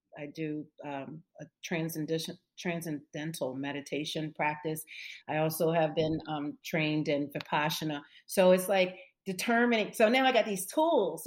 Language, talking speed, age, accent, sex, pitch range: English, 135 wpm, 40-59, American, female, 160-215 Hz